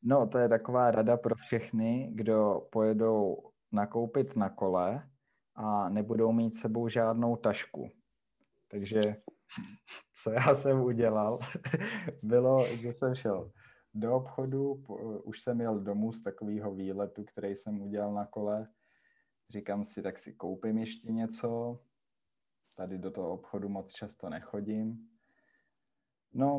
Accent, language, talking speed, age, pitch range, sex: native, Czech, 125 wpm, 20-39, 100-120 Hz, male